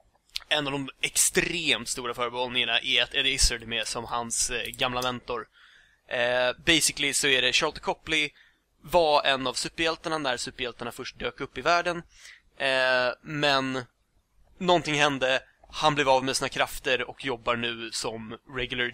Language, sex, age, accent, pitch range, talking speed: English, male, 20-39, Swedish, 125-160 Hz, 155 wpm